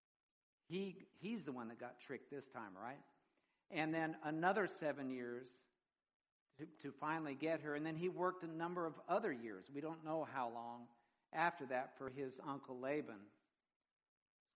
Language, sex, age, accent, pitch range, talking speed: English, male, 60-79, American, 135-170 Hz, 170 wpm